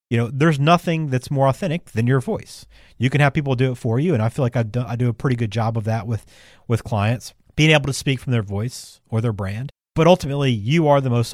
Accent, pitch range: American, 115-145 Hz